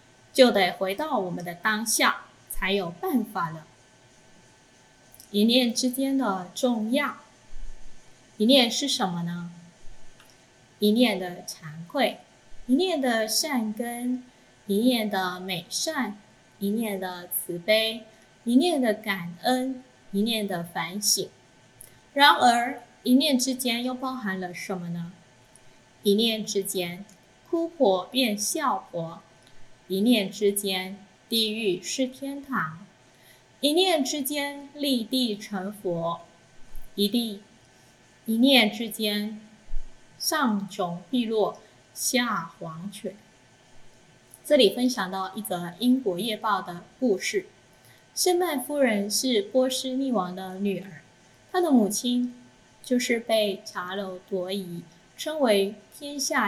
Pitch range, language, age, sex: 170-245 Hz, Chinese, 20-39, female